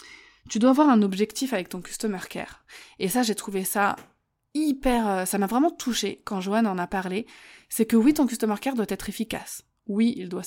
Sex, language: female, French